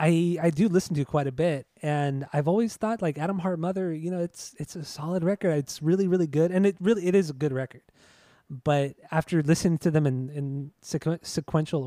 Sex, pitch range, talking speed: male, 135-175 Hz, 220 wpm